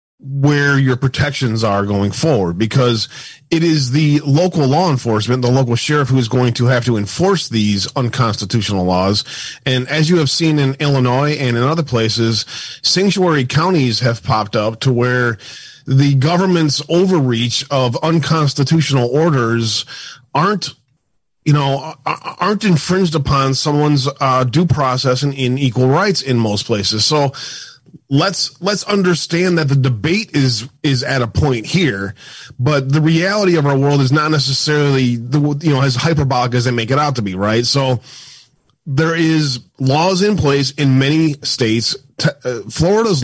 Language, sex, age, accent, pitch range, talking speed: English, male, 30-49, American, 120-150 Hz, 160 wpm